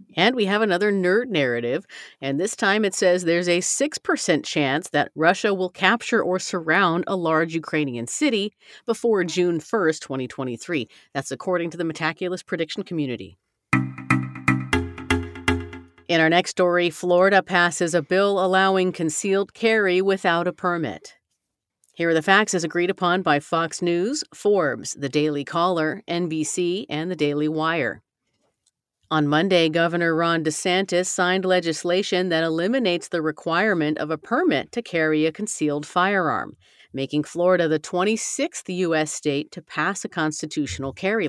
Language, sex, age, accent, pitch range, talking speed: English, female, 40-59, American, 155-195 Hz, 145 wpm